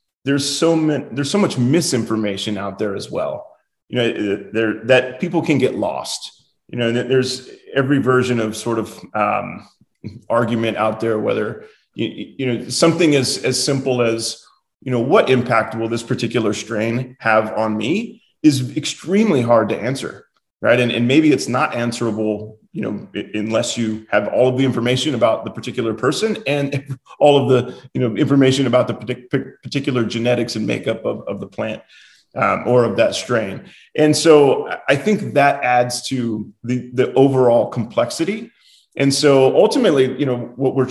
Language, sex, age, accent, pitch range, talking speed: English, male, 30-49, American, 115-145 Hz, 170 wpm